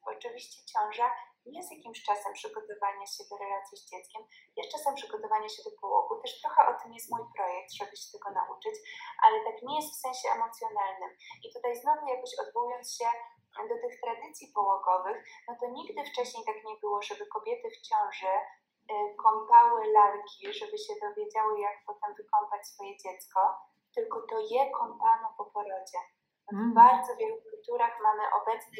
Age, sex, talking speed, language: 20-39, female, 165 wpm, Polish